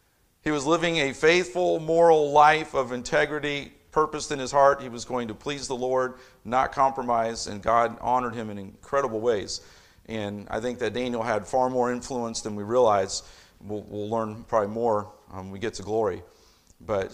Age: 50-69